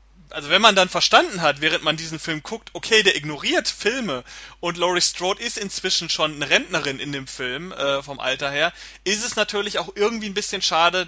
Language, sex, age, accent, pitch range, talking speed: German, male, 30-49, German, 145-195 Hz, 205 wpm